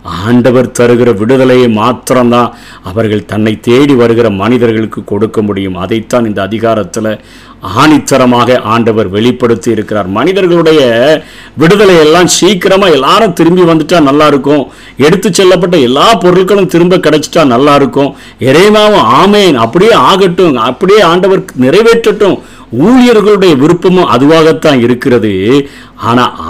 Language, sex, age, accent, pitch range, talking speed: Tamil, male, 50-69, native, 115-165 Hz, 105 wpm